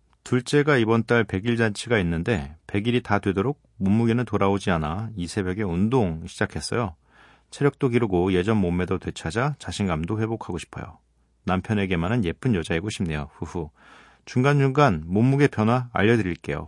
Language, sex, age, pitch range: Korean, male, 40-59, 90-125 Hz